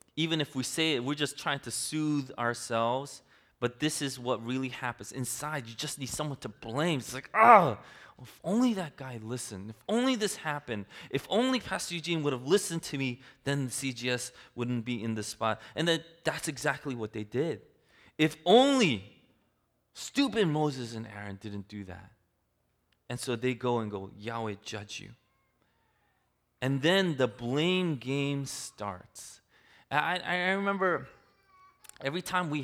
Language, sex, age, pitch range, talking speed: English, male, 20-39, 110-155 Hz, 165 wpm